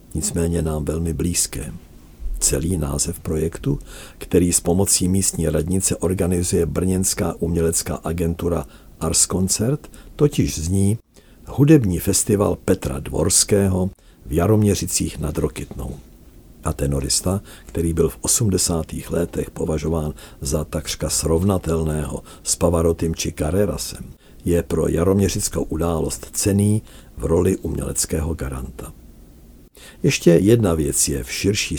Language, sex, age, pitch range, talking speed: Czech, male, 50-69, 80-95 Hz, 110 wpm